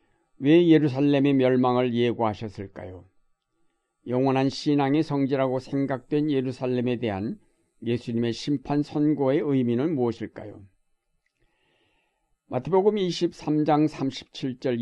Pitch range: 120-145 Hz